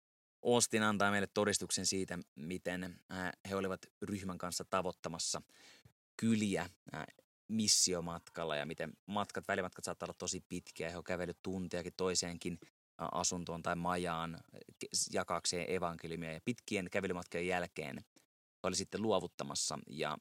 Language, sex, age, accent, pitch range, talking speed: Finnish, male, 20-39, native, 85-95 Hz, 120 wpm